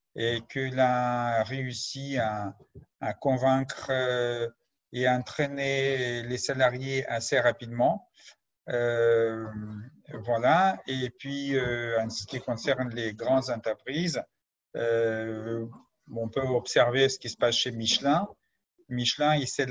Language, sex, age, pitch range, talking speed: French, male, 50-69, 110-135 Hz, 115 wpm